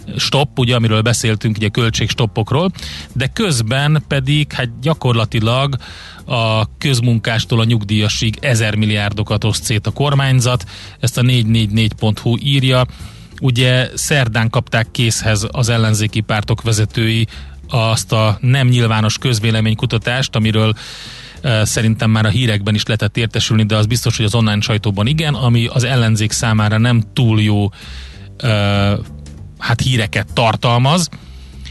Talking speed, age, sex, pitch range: 125 wpm, 30-49, male, 105-125 Hz